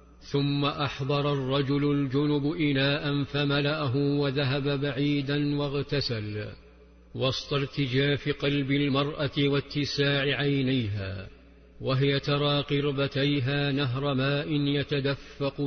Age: 50-69